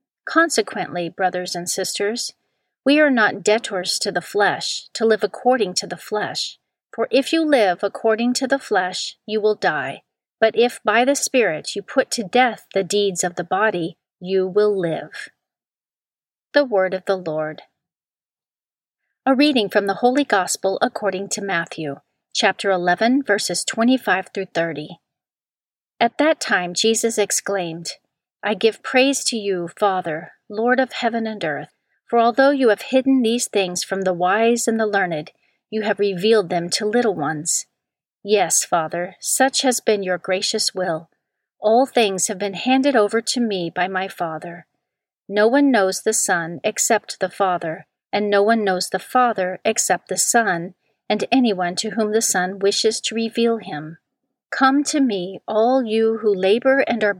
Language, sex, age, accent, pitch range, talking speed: English, female, 40-59, American, 185-235 Hz, 165 wpm